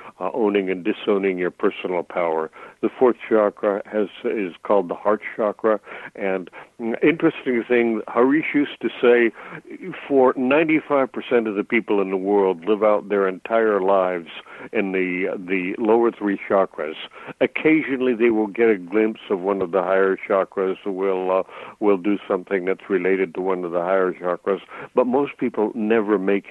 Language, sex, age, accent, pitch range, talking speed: English, male, 60-79, American, 95-110 Hz, 170 wpm